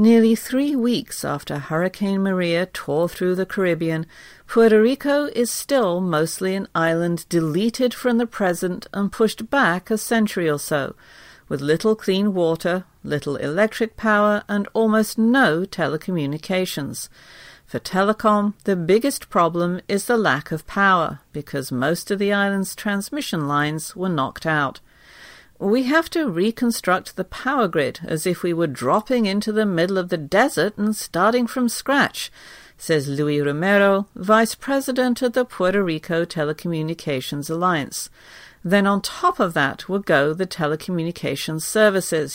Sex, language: female, English